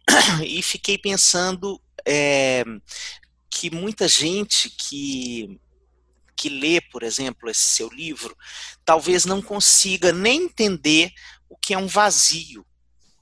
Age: 40-59